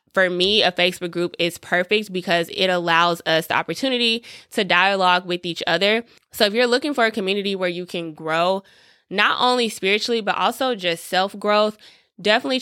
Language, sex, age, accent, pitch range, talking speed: English, female, 20-39, American, 175-220 Hz, 175 wpm